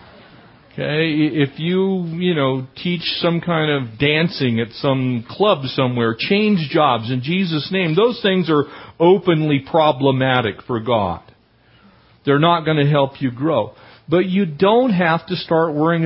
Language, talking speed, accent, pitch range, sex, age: English, 150 wpm, American, 130-185 Hz, male, 50-69